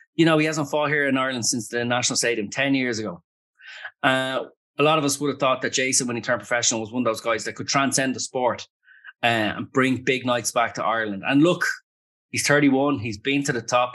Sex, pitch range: male, 110-135 Hz